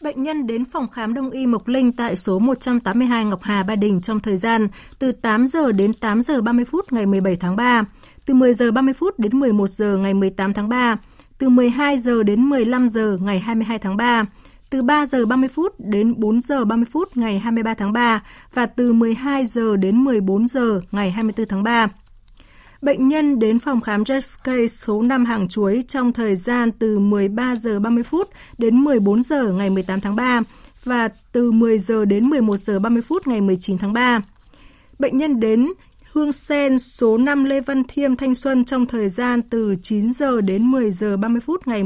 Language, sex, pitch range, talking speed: Vietnamese, female, 210-255 Hz, 200 wpm